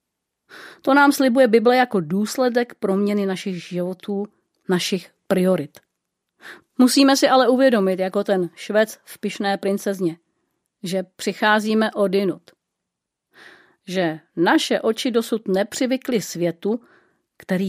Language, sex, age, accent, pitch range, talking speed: Czech, female, 40-59, native, 180-225 Hz, 105 wpm